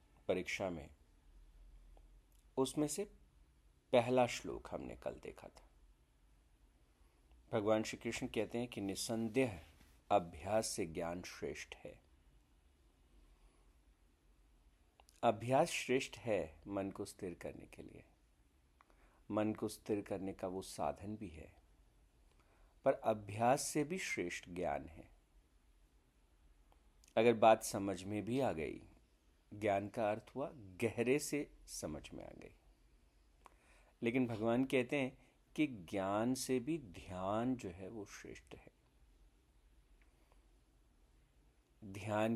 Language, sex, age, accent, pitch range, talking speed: Hindi, male, 50-69, native, 70-115 Hz, 110 wpm